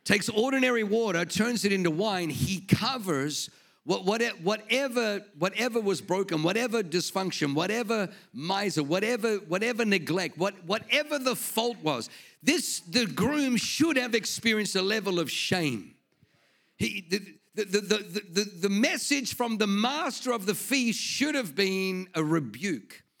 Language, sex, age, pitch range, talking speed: English, male, 50-69, 160-215 Hz, 145 wpm